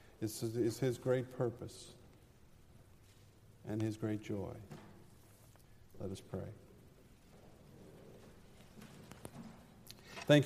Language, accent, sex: English, American, male